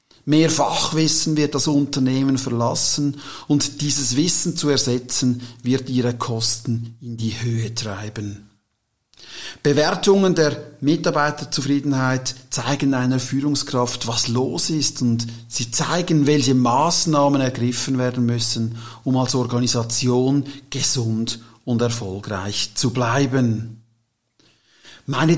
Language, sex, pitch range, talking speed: German, male, 120-150 Hz, 105 wpm